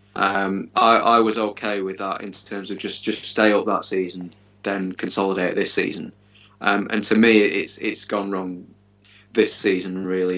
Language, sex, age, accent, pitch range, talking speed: English, male, 20-39, British, 100-105 Hz, 180 wpm